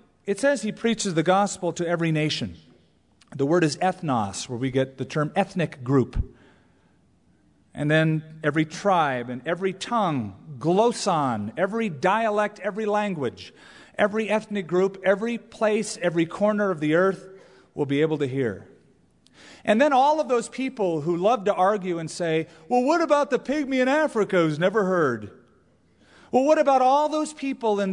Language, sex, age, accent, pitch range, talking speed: English, male, 40-59, American, 145-210 Hz, 165 wpm